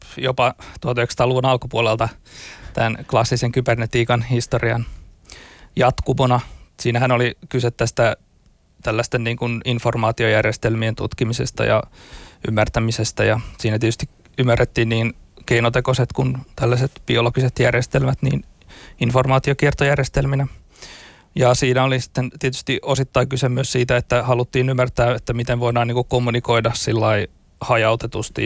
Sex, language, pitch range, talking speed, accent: male, Finnish, 115-130 Hz, 105 wpm, native